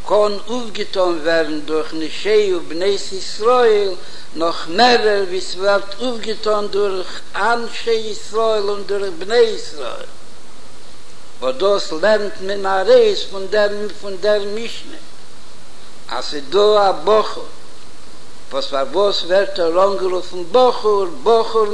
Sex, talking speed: male, 90 wpm